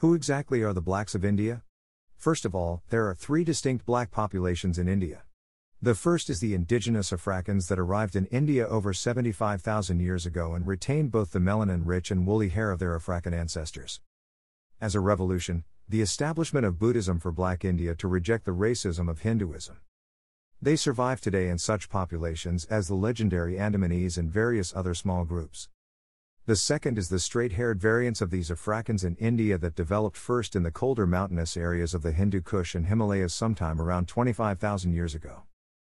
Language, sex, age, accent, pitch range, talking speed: English, male, 50-69, American, 90-115 Hz, 175 wpm